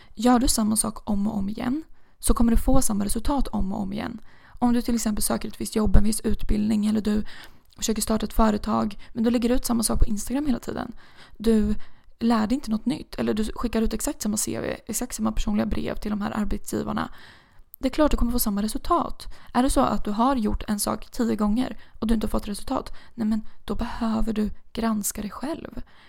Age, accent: 20-39, native